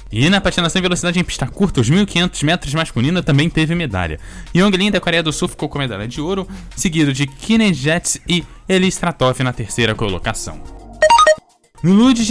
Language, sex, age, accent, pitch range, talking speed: Portuguese, male, 10-29, Brazilian, 130-180 Hz, 175 wpm